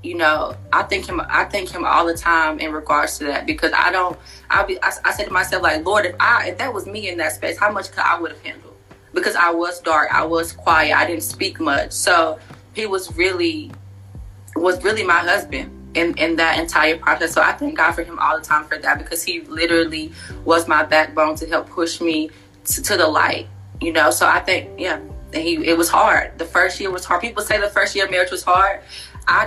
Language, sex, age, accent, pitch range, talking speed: English, female, 20-39, American, 155-185 Hz, 240 wpm